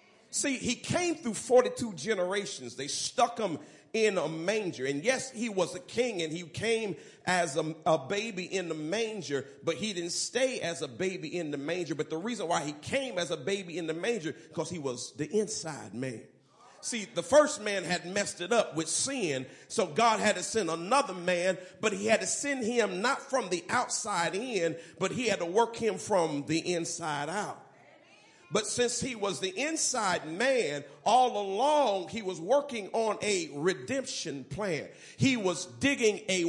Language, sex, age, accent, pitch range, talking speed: English, male, 40-59, American, 170-240 Hz, 185 wpm